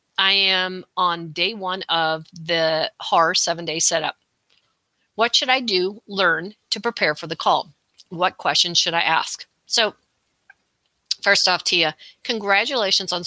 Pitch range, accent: 175-205 Hz, American